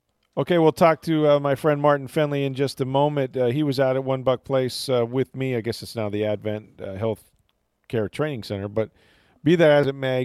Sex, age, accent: male, 40-59, American